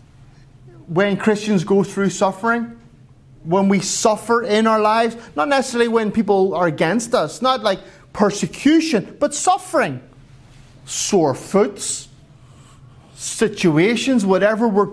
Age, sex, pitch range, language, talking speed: 30-49, male, 135-200 Hz, English, 115 wpm